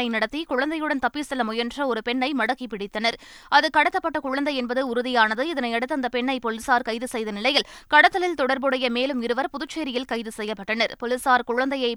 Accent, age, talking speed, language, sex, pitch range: native, 20-39, 145 wpm, Tamil, female, 230-275 Hz